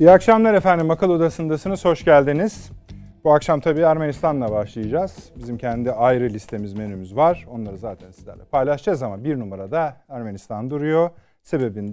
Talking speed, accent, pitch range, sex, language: 140 wpm, native, 115-160 Hz, male, Turkish